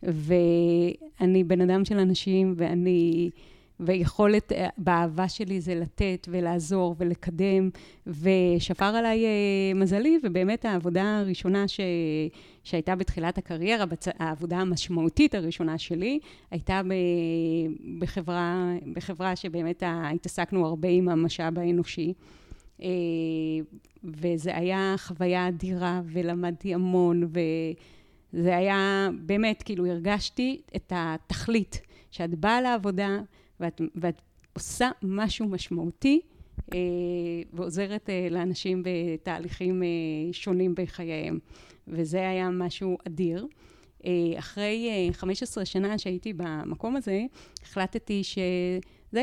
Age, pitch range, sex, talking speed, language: 30-49, 170-200 Hz, female, 90 wpm, English